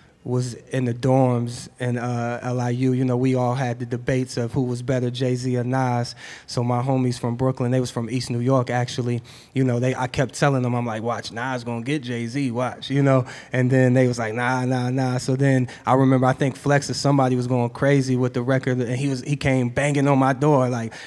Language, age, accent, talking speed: English, 20-39, American, 240 wpm